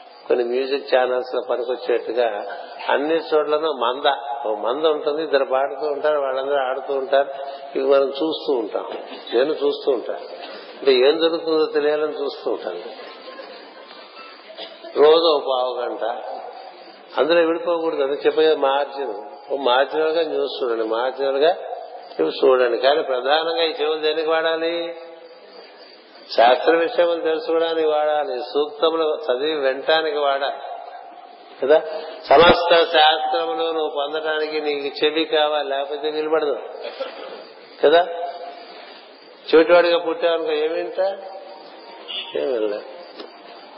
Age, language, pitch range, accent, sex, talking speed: 50-69, Telugu, 140-235 Hz, native, male, 100 wpm